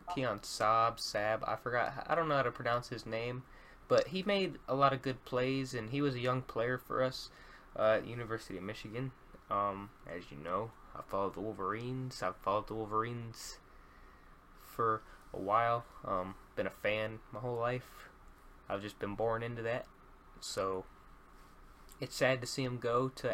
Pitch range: 105-130 Hz